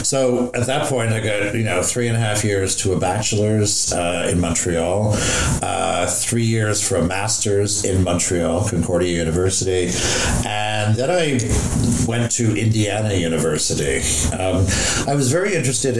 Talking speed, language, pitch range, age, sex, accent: 155 wpm, English, 90-120 Hz, 50-69, male, American